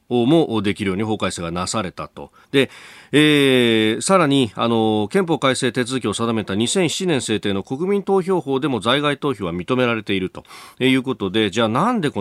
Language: Japanese